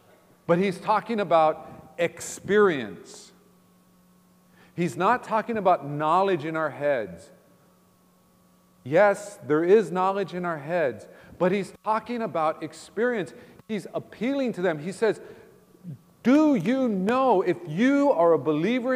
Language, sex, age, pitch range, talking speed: English, male, 40-59, 160-215 Hz, 125 wpm